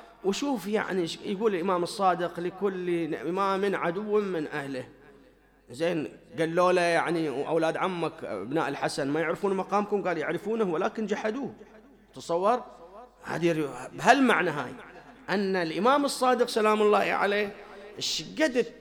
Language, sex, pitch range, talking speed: English, male, 170-230 Hz, 120 wpm